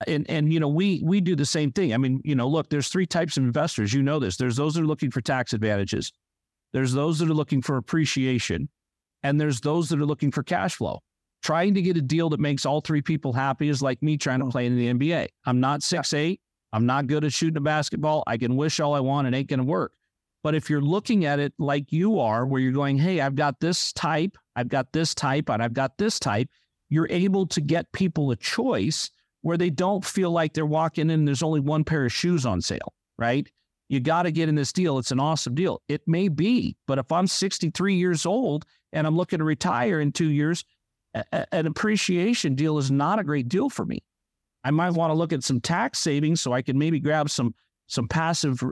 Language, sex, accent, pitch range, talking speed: English, male, American, 135-165 Hz, 240 wpm